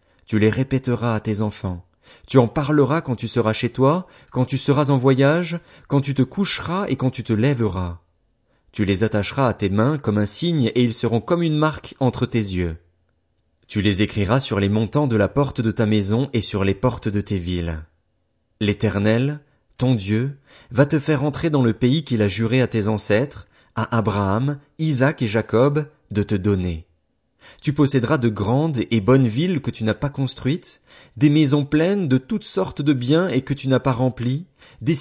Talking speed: 200 wpm